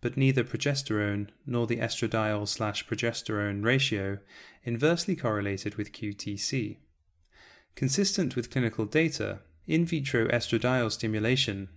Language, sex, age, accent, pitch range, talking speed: English, male, 30-49, British, 105-125 Hz, 95 wpm